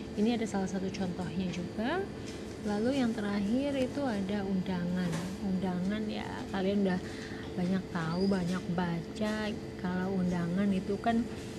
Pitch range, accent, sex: 180-210 Hz, Indonesian, female